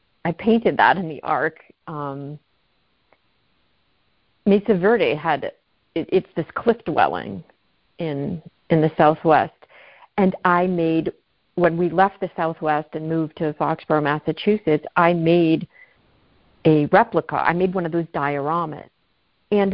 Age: 40-59